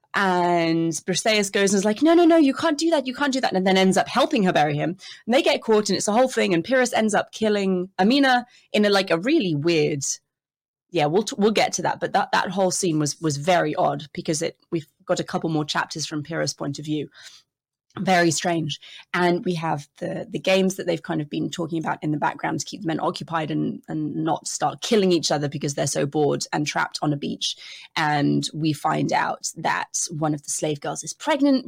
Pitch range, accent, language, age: 155-190 Hz, British, English, 20-39